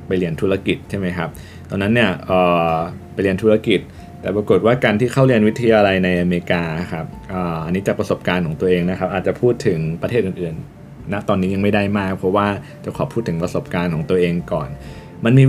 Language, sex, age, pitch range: Thai, male, 20-39, 90-110 Hz